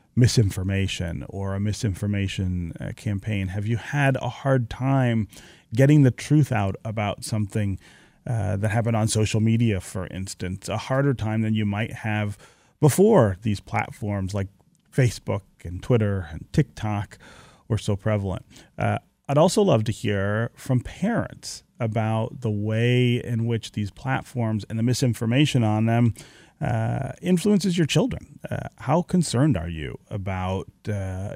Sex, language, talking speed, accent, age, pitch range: male, English, 145 wpm, American, 30-49, 100-125 Hz